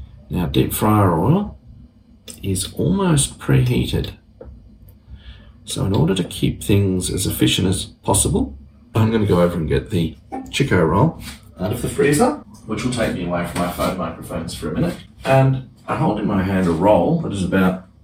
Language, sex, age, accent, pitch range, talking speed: English, male, 40-59, Australian, 75-100 Hz, 180 wpm